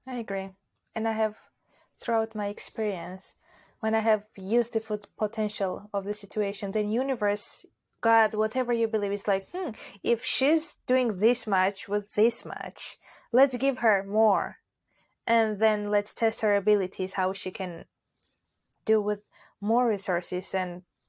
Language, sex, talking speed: English, female, 150 wpm